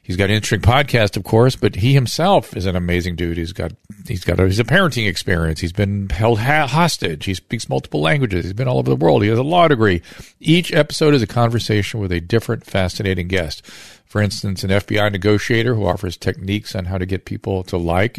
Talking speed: 225 wpm